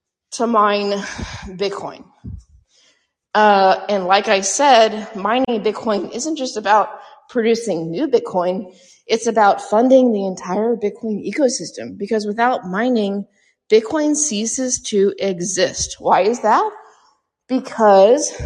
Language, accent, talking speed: English, American, 110 wpm